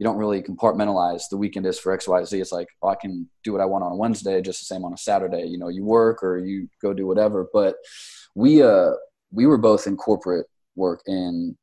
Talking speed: 225 wpm